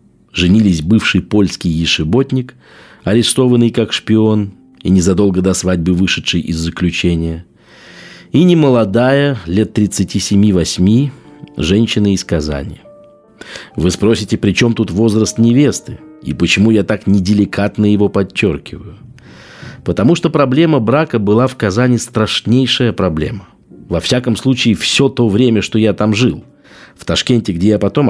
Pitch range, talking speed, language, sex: 90-120 Hz, 125 wpm, Russian, male